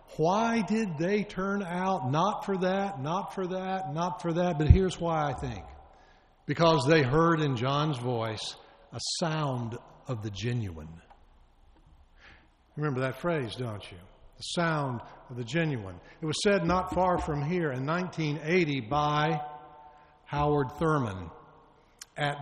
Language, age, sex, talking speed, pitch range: English, 60-79, male, 140 wpm, 125-180 Hz